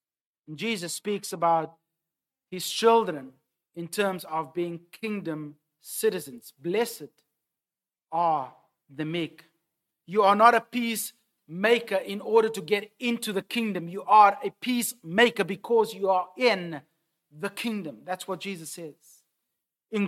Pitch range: 180-250 Hz